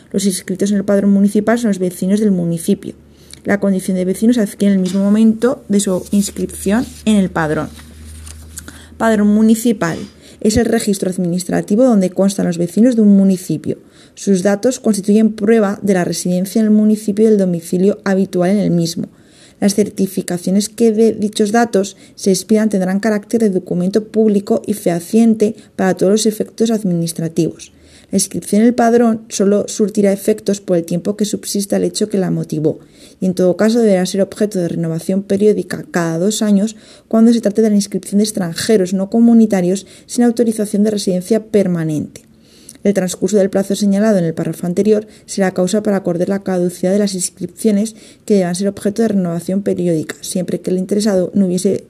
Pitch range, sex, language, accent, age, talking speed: 185-215 Hz, female, Spanish, Spanish, 20-39, 180 wpm